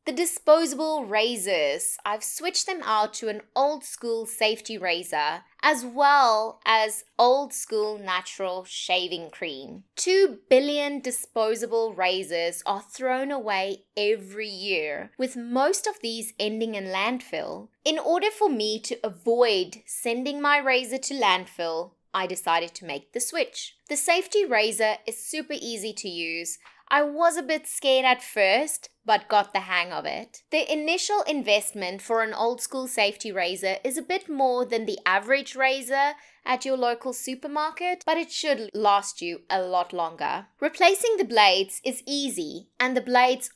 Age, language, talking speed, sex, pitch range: 20-39, English, 155 wpm, female, 195-285 Hz